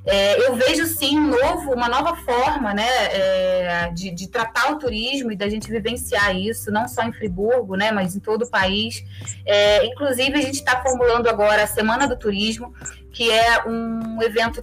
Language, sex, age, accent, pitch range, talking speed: Portuguese, female, 20-39, Brazilian, 220-275 Hz, 190 wpm